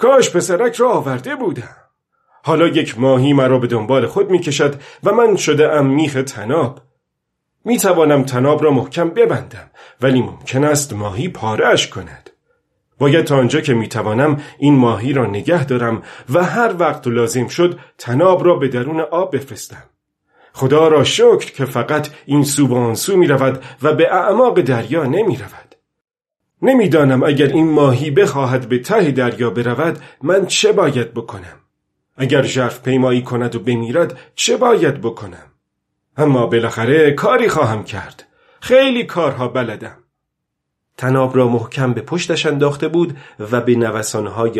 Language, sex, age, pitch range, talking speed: Persian, male, 40-59, 120-155 Hz, 145 wpm